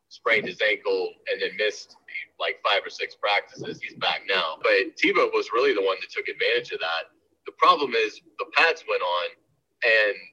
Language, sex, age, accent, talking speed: English, male, 30-49, American, 200 wpm